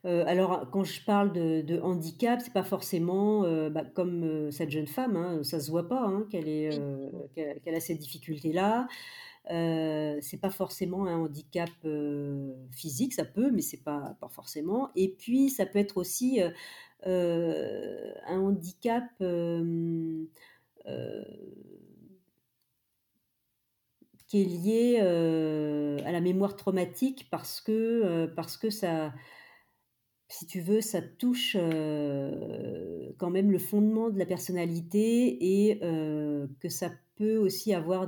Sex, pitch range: female, 155-205 Hz